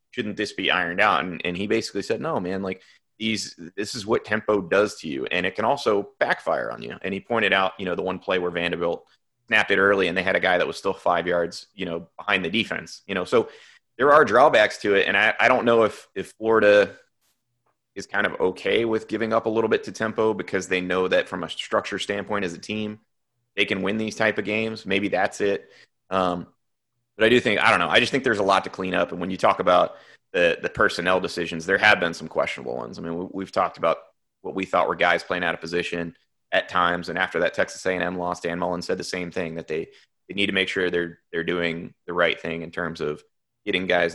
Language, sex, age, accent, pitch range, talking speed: English, male, 30-49, American, 85-110 Hz, 250 wpm